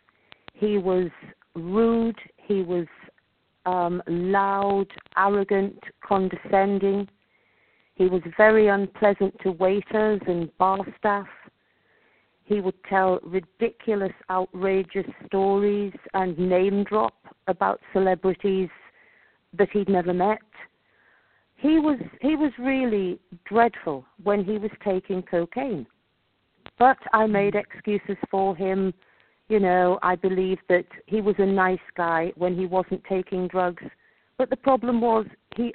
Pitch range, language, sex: 185-220 Hz, English, female